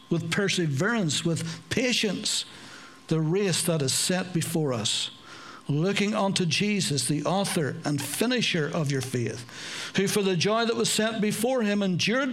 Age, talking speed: 60-79, 150 wpm